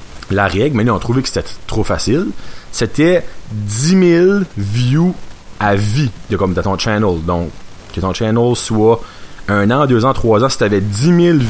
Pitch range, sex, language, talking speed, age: 95-125 Hz, male, French, 200 wpm, 30-49